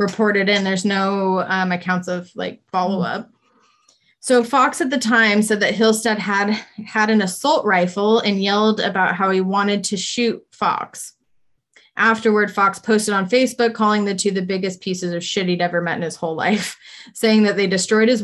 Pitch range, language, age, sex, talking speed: 185-220 Hz, English, 20-39, female, 190 wpm